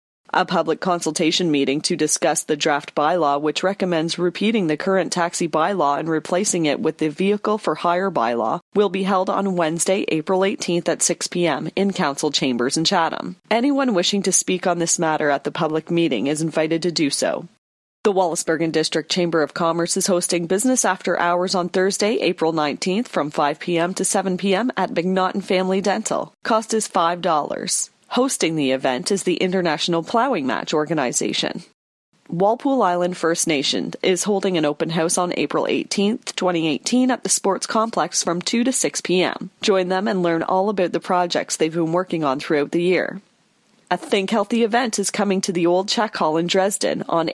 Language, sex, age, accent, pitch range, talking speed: English, female, 30-49, American, 165-200 Hz, 185 wpm